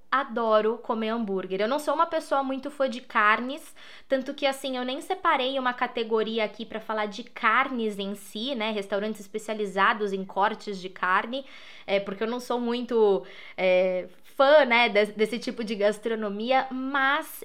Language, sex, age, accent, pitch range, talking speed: Portuguese, female, 20-39, Brazilian, 200-265 Hz, 170 wpm